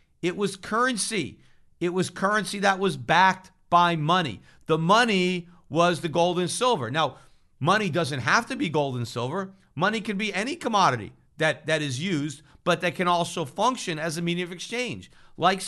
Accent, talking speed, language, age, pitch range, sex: American, 180 wpm, English, 50-69, 150-195 Hz, male